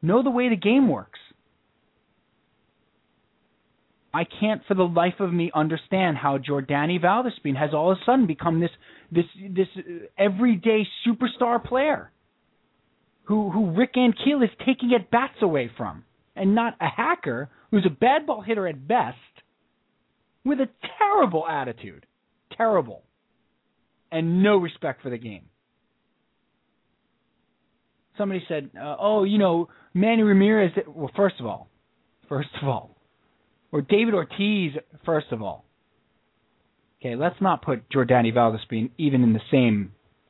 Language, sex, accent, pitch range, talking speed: English, male, American, 145-220 Hz, 135 wpm